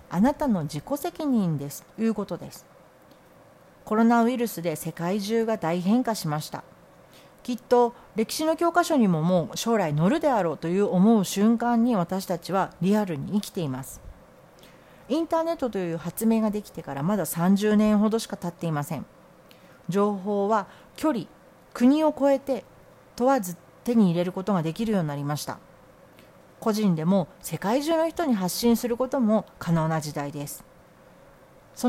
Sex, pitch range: female, 170-250 Hz